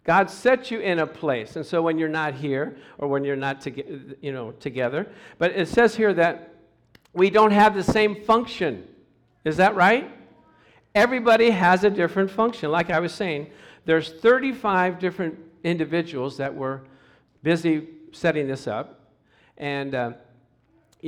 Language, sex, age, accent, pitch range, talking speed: English, male, 50-69, American, 135-205 Hz, 155 wpm